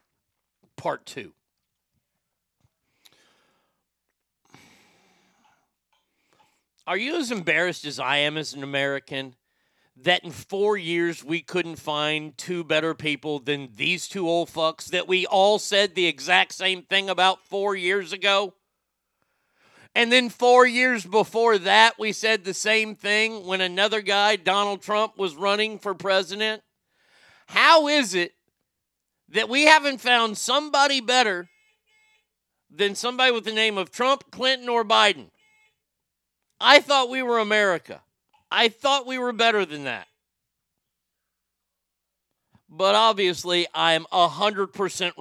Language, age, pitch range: English, 40-59, 175-230 Hz